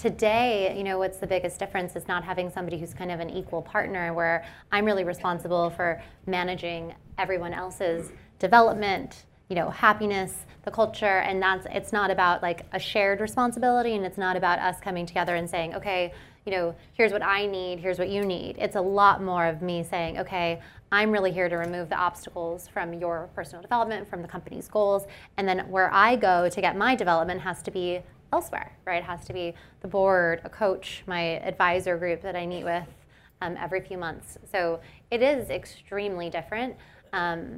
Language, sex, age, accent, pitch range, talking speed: English, female, 20-39, American, 175-200 Hz, 195 wpm